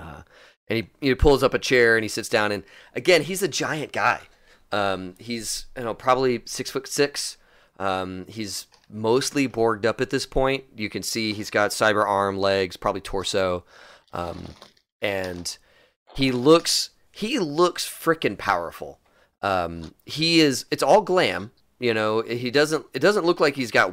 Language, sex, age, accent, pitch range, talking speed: English, male, 30-49, American, 95-125 Hz, 170 wpm